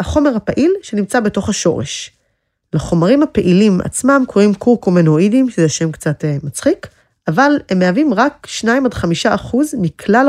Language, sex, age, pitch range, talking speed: Hebrew, female, 20-39, 170-235 Hz, 110 wpm